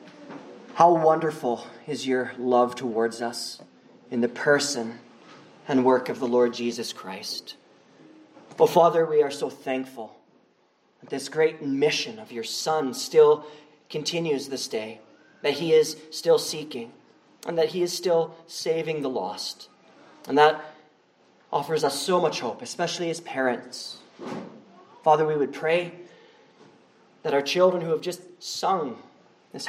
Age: 30-49